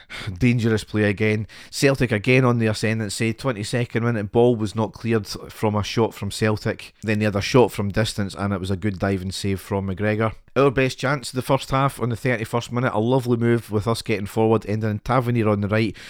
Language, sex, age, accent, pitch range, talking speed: English, male, 40-59, British, 100-120 Hz, 215 wpm